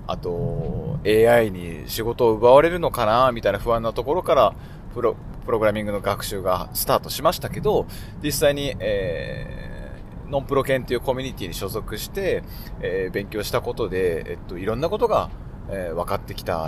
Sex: male